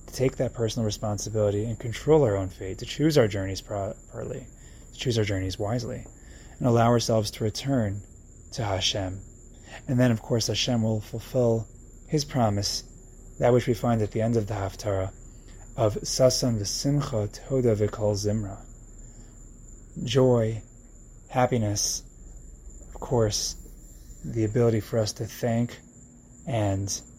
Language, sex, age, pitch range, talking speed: English, male, 20-39, 105-125 Hz, 135 wpm